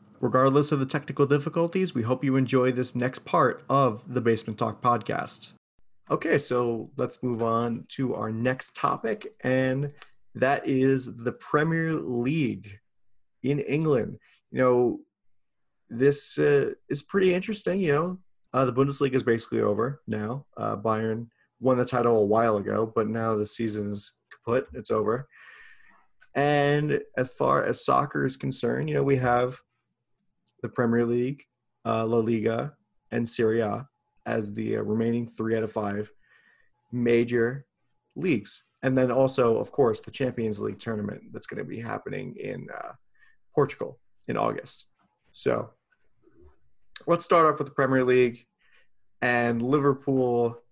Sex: male